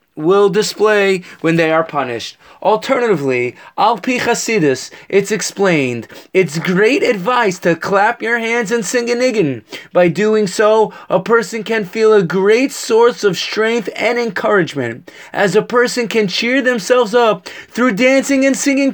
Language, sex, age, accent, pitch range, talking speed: English, male, 30-49, American, 165-225 Hz, 145 wpm